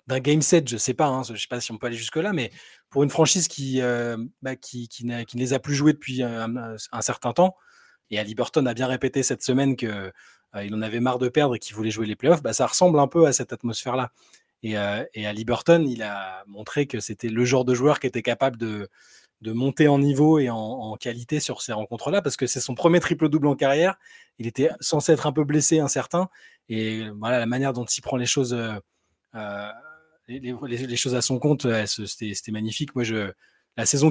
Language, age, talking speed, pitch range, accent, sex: French, 20-39, 240 wpm, 115-145 Hz, French, male